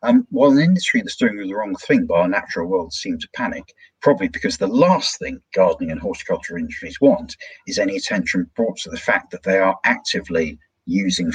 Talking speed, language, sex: 200 wpm, English, male